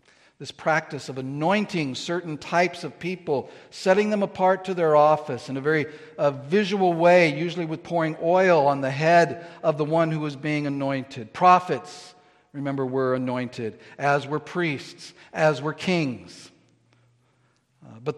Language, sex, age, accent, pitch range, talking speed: English, male, 50-69, American, 140-180 Hz, 145 wpm